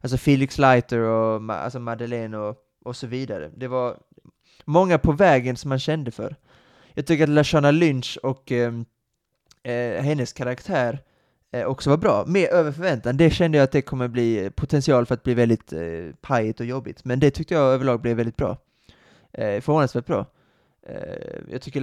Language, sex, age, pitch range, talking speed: Swedish, male, 20-39, 120-150 Hz, 185 wpm